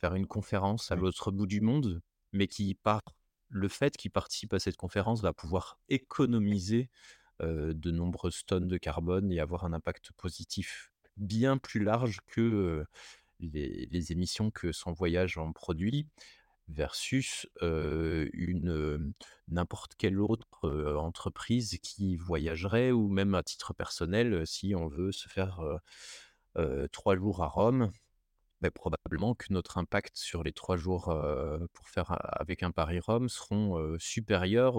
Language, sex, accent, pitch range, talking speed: French, male, French, 85-110 Hz, 150 wpm